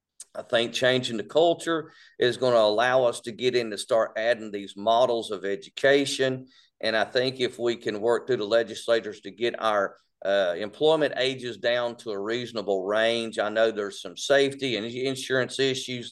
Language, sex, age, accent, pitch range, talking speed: English, male, 50-69, American, 115-150 Hz, 180 wpm